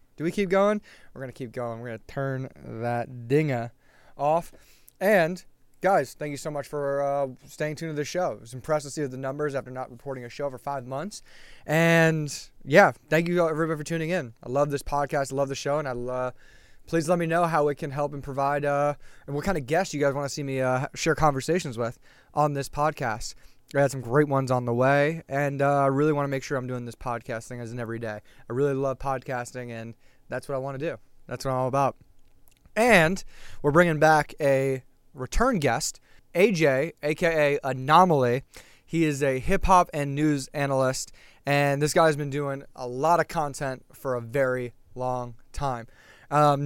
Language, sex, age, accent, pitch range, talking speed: English, male, 20-39, American, 125-150 Hz, 215 wpm